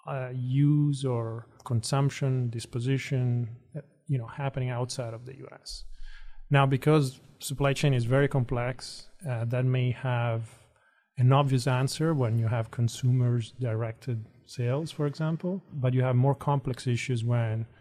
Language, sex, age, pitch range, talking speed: English, male, 30-49, 115-135 Hz, 140 wpm